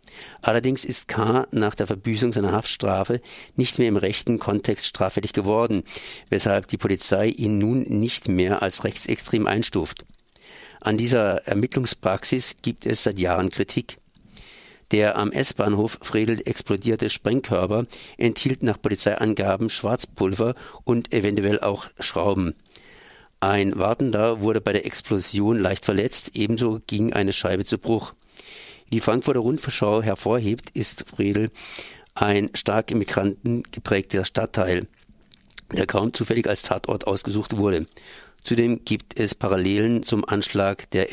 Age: 50-69